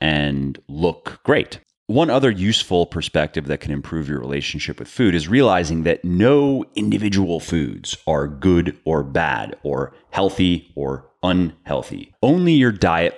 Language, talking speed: English, 140 wpm